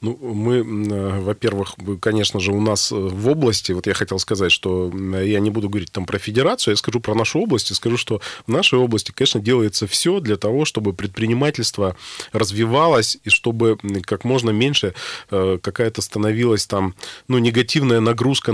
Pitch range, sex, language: 100-120 Hz, male, Russian